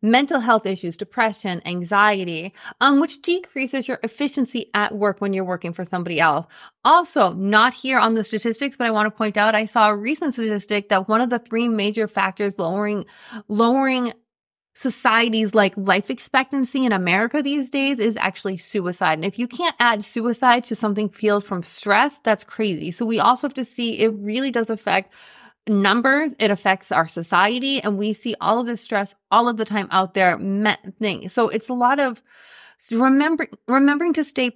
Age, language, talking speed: 30-49, English, 180 wpm